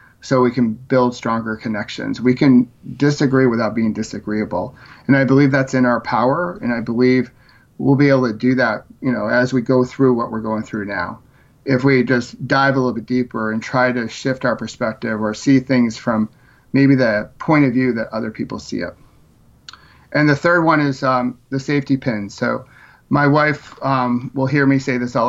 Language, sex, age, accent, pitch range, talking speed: English, male, 40-59, American, 115-135 Hz, 205 wpm